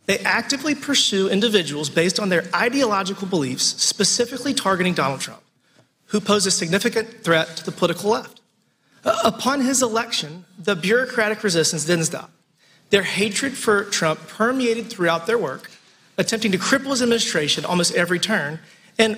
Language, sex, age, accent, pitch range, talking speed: English, male, 40-59, American, 175-240 Hz, 145 wpm